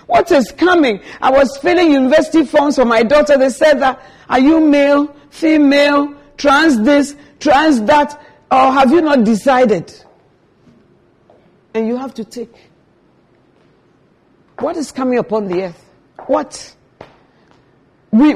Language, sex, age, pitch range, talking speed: English, female, 50-69, 185-285 Hz, 130 wpm